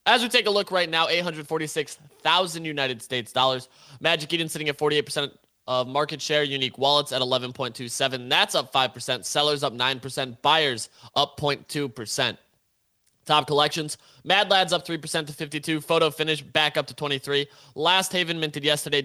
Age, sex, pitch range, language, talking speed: 20-39, male, 140-170 Hz, English, 160 wpm